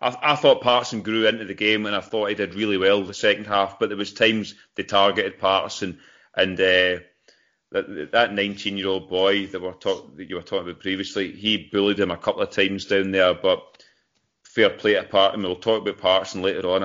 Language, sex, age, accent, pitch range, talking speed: English, male, 30-49, British, 95-115 Hz, 215 wpm